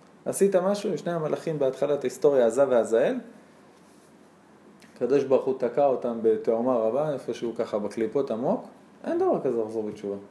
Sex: male